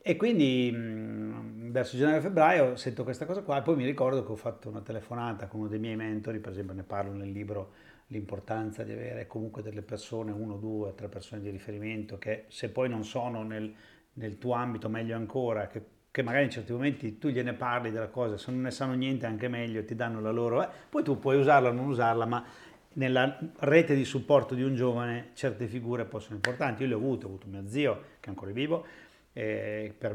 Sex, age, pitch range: male, 40-59, 110-130 Hz